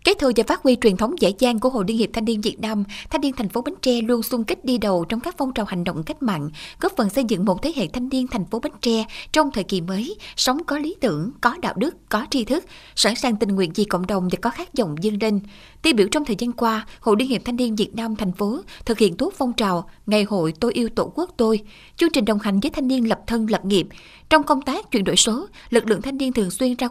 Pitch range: 205-260 Hz